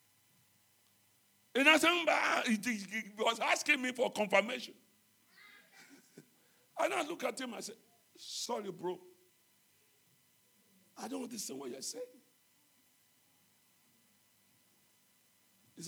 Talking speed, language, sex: 100 wpm, English, male